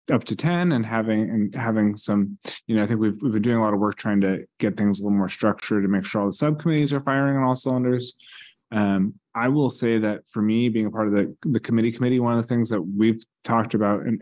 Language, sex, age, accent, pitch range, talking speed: English, male, 20-39, American, 100-115 Hz, 265 wpm